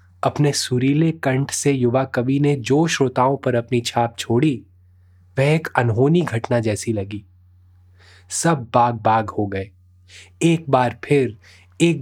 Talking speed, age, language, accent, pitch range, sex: 140 wpm, 20-39, Hindi, native, 90-135 Hz, male